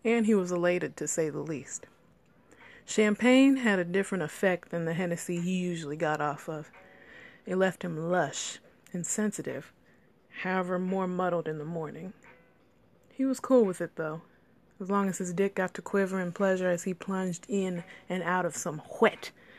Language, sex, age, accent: English, female, 20-39, American